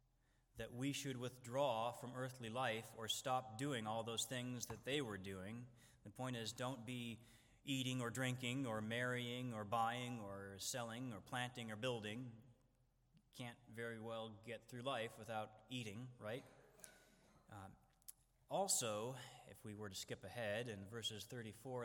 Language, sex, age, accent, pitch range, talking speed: English, male, 20-39, American, 115-145 Hz, 150 wpm